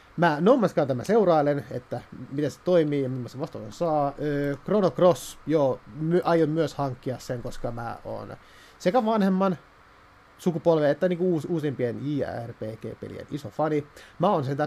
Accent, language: native, Finnish